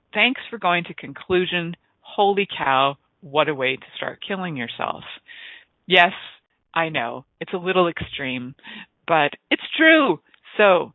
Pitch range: 150-200 Hz